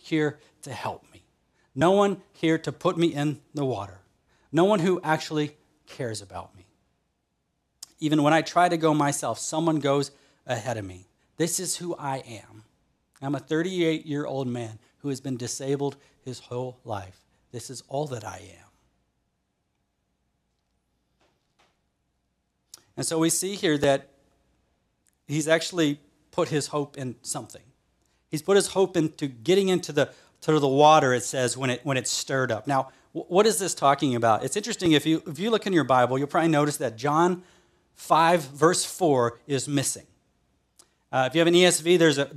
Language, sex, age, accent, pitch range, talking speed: English, male, 40-59, American, 130-160 Hz, 170 wpm